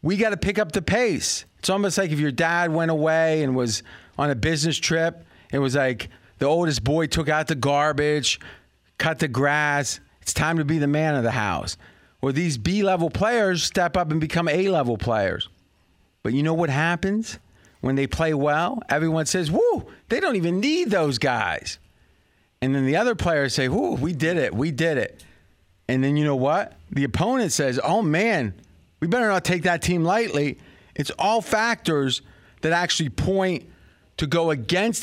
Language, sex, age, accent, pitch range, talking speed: English, male, 30-49, American, 130-170 Hz, 190 wpm